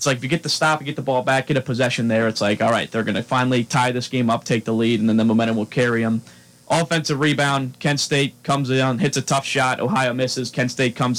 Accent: American